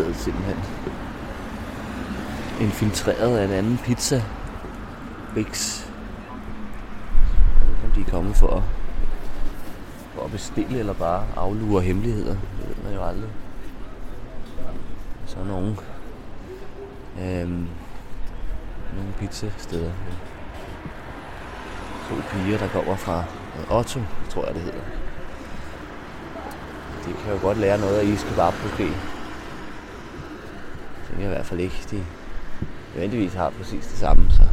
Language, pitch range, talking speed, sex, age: Danish, 85-105 Hz, 115 wpm, male, 30-49